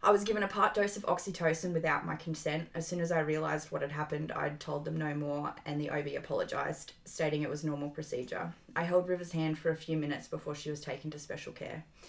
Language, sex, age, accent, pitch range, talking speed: English, female, 20-39, Australian, 150-170 Hz, 240 wpm